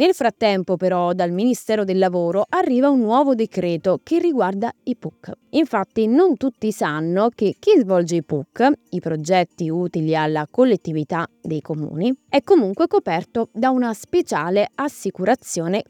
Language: Italian